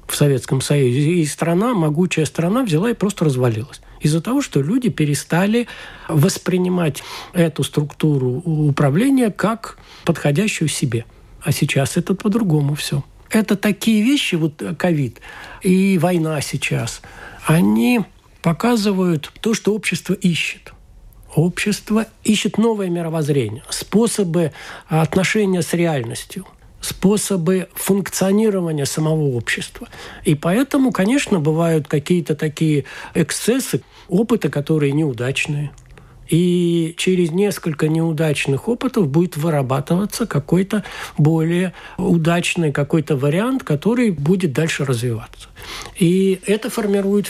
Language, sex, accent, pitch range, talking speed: Russian, male, native, 150-200 Hz, 105 wpm